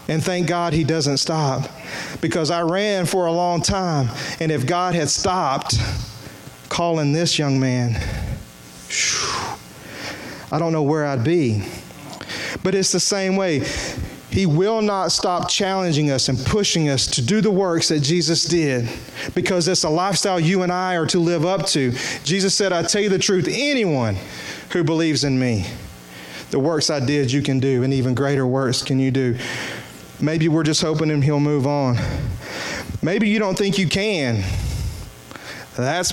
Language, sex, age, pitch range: English, male, 30-49, 125-185 Hz